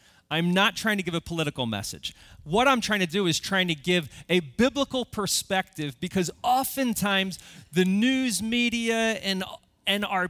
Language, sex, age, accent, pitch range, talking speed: English, male, 30-49, American, 155-205 Hz, 165 wpm